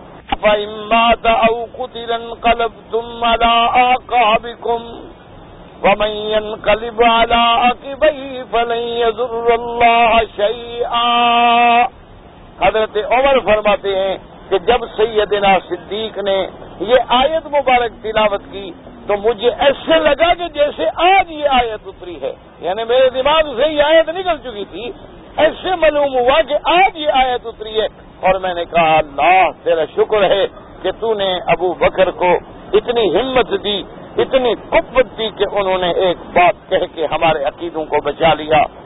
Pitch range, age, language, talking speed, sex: 200-265 Hz, 50-69, English, 115 wpm, male